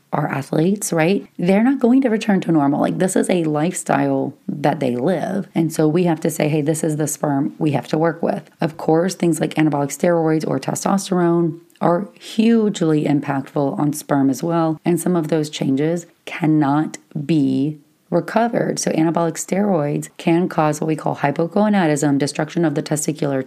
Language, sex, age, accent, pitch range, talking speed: English, female, 30-49, American, 150-180 Hz, 180 wpm